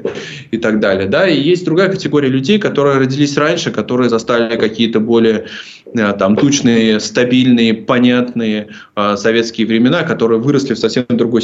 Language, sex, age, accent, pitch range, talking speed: Russian, male, 20-39, native, 110-130 Hz, 125 wpm